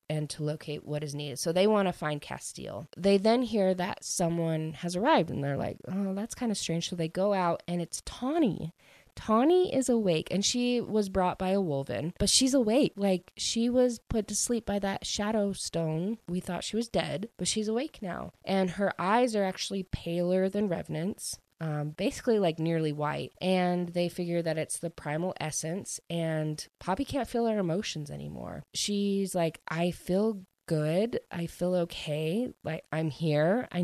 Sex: female